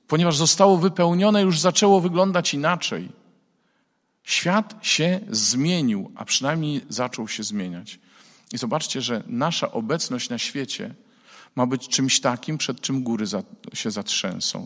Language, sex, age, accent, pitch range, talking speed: Polish, male, 40-59, native, 125-200 Hz, 125 wpm